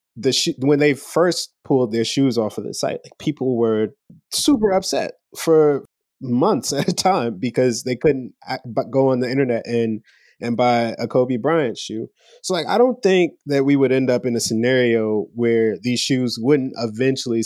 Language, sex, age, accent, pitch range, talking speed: English, male, 20-39, American, 115-140 Hz, 195 wpm